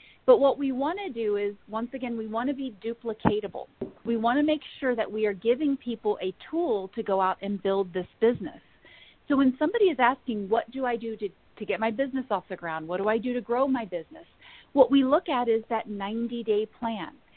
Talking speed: 230 wpm